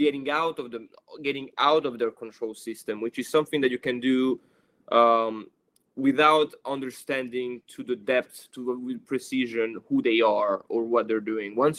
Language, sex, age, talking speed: English, male, 20-39, 175 wpm